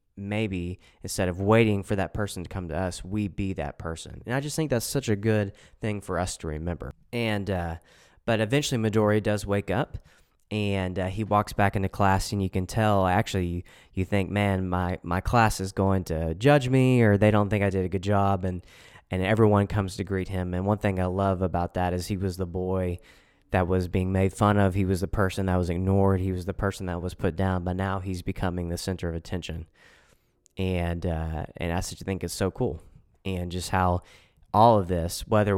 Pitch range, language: 90-105 Hz, English